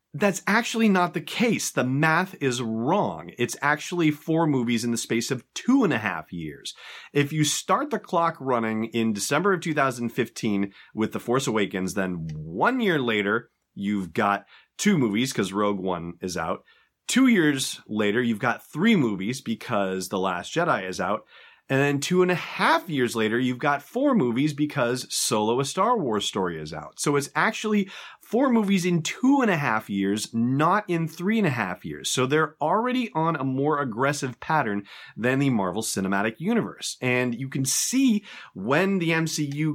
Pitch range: 115-170 Hz